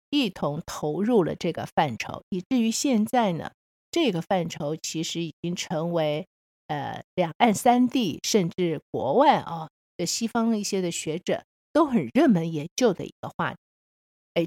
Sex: female